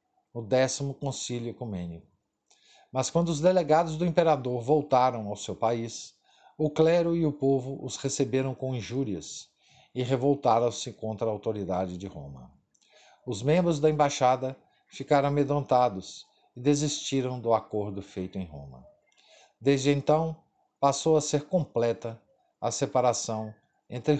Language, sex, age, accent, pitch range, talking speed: Portuguese, male, 50-69, Brazilian, 115-150 Hz, 130 wpm